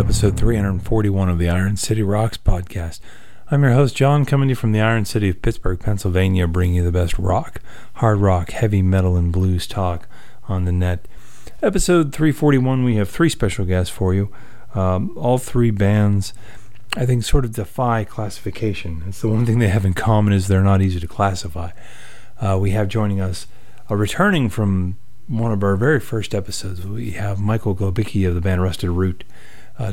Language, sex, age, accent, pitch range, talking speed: English, male, 40-59, American, 95-115 Hz, 190 wpm